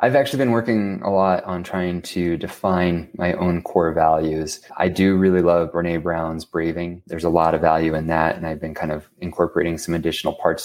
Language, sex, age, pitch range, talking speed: English, male, 20-39, 80-95 Hz, 210 wpm